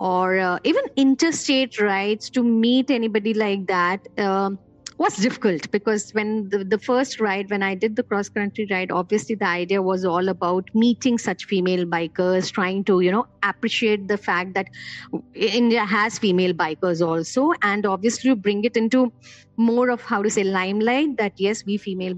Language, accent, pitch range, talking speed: Hindi, native, 180-235 Hz, 175 wpm